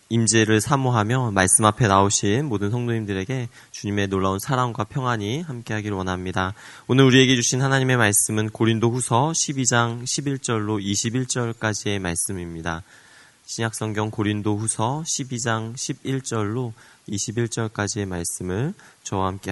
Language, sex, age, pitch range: Korean, male, 20-39, 100-125 Hz